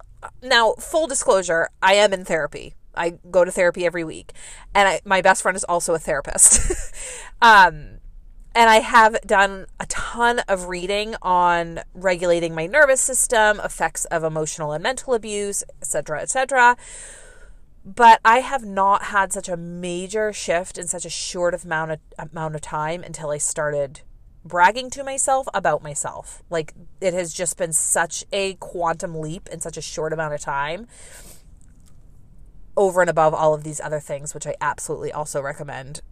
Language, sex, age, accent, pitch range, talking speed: English, female, 30-49, American, 155-215 Hz, 165 wpm